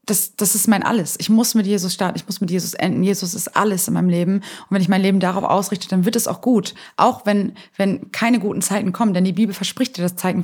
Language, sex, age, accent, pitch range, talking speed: German, female, 20-39, German, 195-230 Hz, 270 wpm